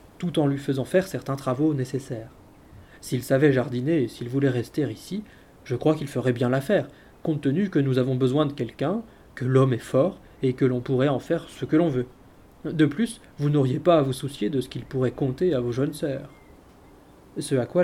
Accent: French